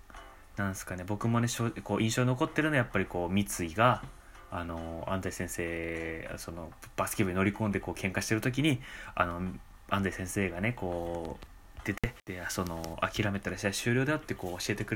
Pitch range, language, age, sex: 95-120 Hz, Japanese, 20-39, male